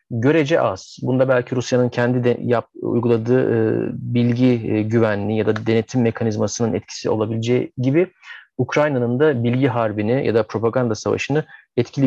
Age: 40-59